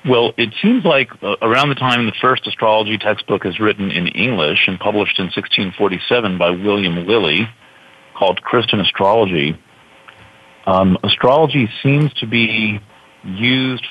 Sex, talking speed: male, 140 wpm